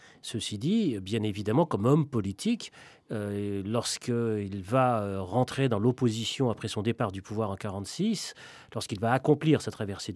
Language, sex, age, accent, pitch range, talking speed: French, male, 40-59, French, 105-145 Hz, 150 wpm